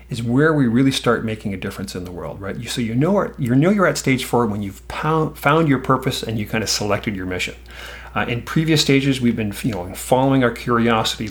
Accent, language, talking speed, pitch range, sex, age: American, English, 235 wpm, 105-130 Hz, male, 40-59